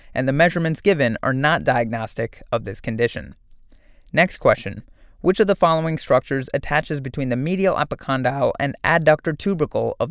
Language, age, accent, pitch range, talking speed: English, 20-39, American, 125-160 Hz, 155 wpm